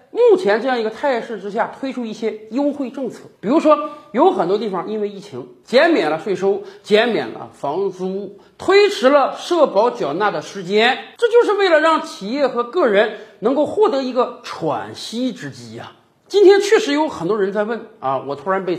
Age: 50-69